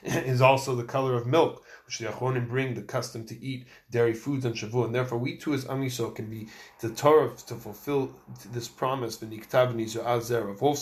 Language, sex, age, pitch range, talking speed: English, male, 20-39, 115-135 Hz, 200 wpm